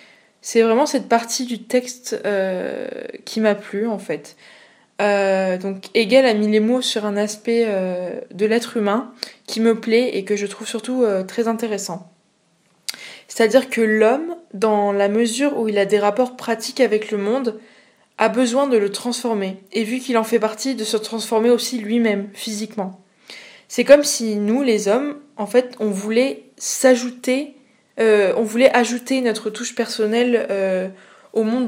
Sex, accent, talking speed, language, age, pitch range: female, French, 170 wpm, French, 20-39, 205-250 Hz